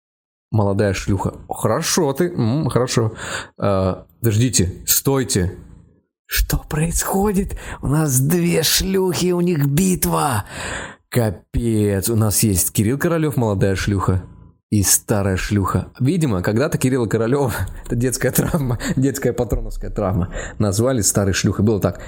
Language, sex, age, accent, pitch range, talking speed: Russian, male, 20-39, native, 95-140 Hz, 120 wpm